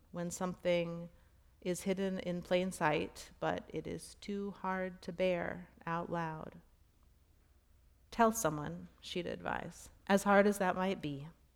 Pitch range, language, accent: 150-185 Hz, English, American